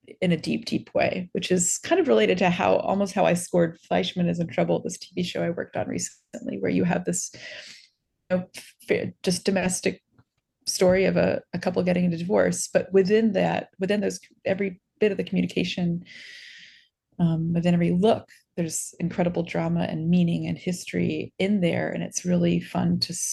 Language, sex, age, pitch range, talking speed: English, female, 30-49, 175-205 Hz, 185 wpm